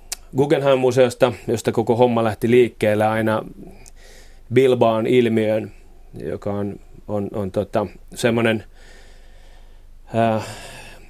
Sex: male